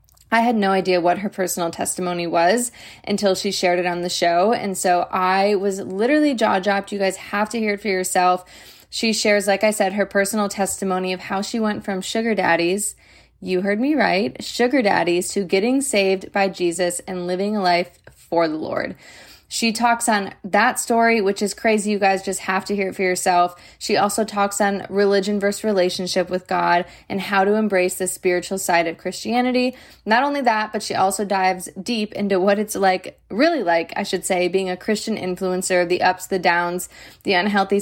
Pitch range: 185-205 Hz